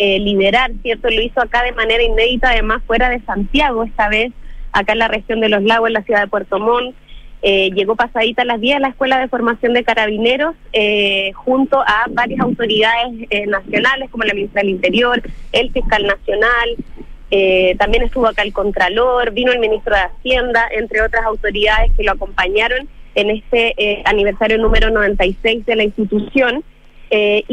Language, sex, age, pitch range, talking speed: Spanish, female, 20-39, 210-255 Hz, 180 wpm